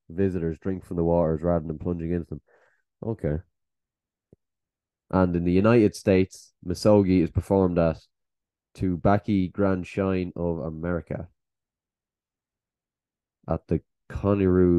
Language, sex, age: English, male, 20-39